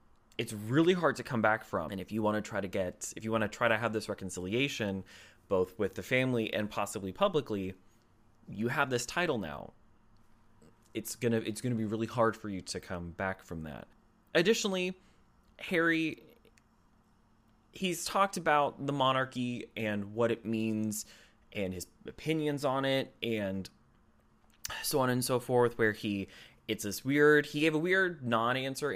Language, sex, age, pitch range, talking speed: English, male, 20-39, 100-130 Hz, 175 wpm